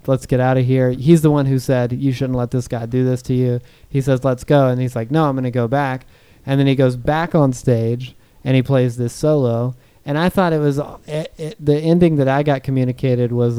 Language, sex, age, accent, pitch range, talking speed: English, male, 30-49, American, 125-140 Hz, 245 wpm